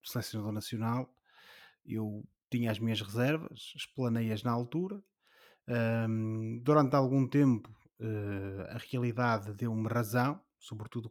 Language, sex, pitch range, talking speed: Portuguese, male, 115-140 Hz, 120 wpm